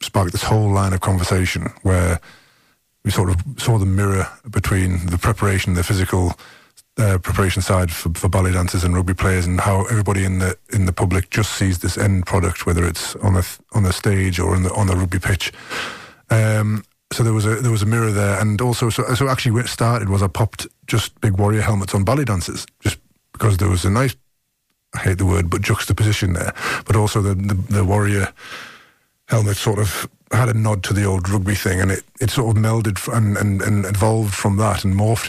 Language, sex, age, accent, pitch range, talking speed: English, male, 30-49, British, 95-110 Hz, 215 wpm